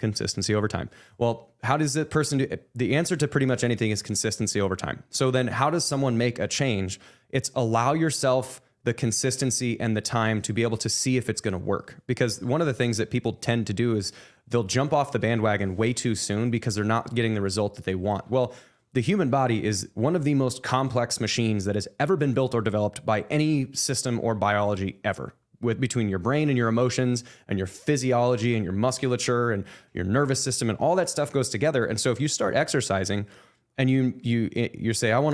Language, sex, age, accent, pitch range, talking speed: English, male, 20-39, American, 110-135 Hz, 230 wpm